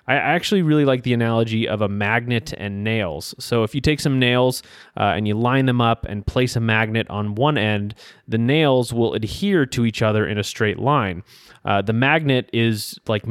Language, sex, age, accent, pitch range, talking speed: English, male, 30-49, American, 110-130 Hz, 205 wpm